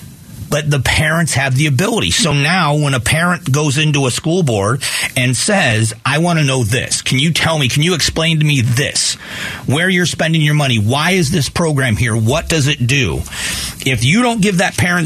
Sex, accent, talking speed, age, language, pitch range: male, American, 210 wpm, 40-59, English, 125-165 Hz